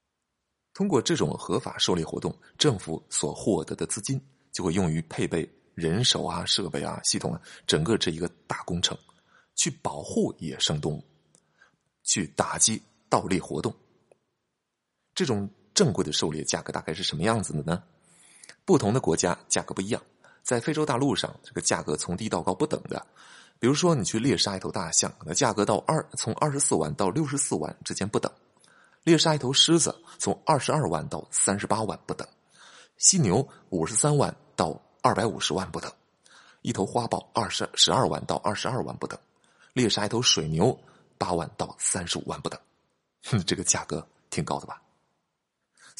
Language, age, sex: Chinese, 30-49, male